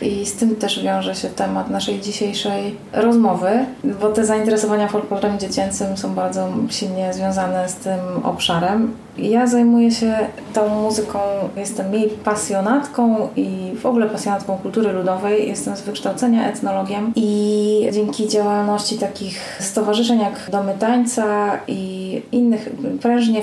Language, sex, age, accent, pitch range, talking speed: Polish, female, 20-39, native, 195-230 Hz, 130 wpm